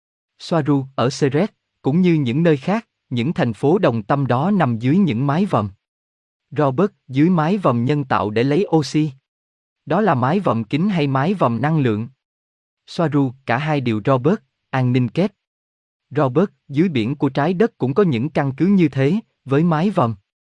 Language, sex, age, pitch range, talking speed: Vietnamese, male, 20-39, 115-160 Hz, 180 wpm